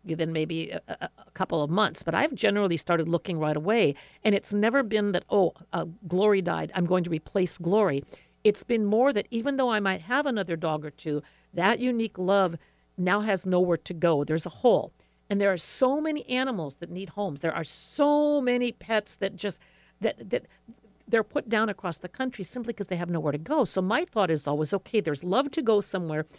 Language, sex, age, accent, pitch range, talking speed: English, female, 50-69, American, 170-220 Hz, 215 wpm